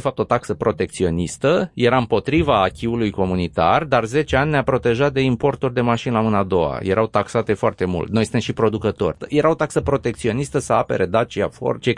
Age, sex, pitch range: 30-49, male, 110-145 Hz